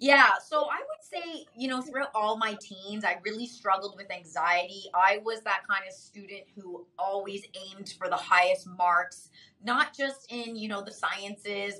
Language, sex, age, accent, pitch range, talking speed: English, female, 20-39, American, 180-220 Hz, 185 wpm